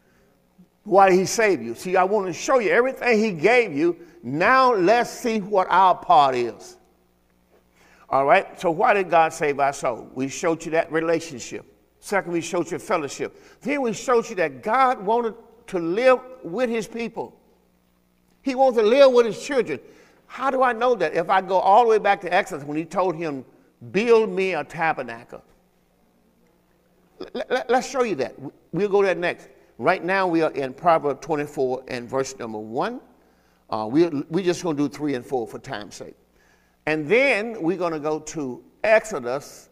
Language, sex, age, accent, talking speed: English, male, 50-69, American, 185 wpm